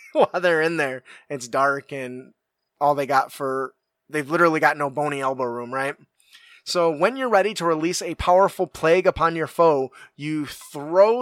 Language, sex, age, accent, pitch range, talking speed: English, male, 20-39, American, 145-175 Hz, 175 wpm